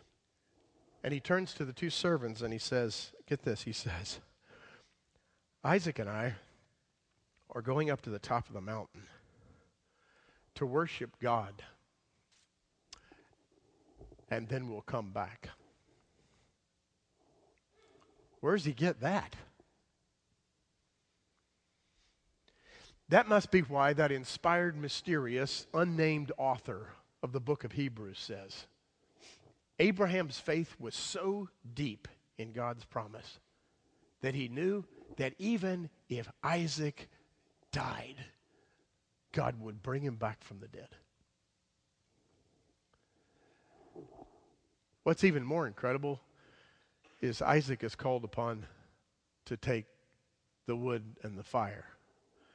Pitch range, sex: 115-155 Hz, male